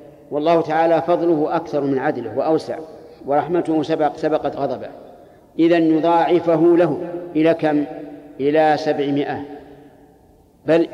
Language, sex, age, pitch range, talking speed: Arabic, male, 50-69, 145-170 Hz, 105 wpm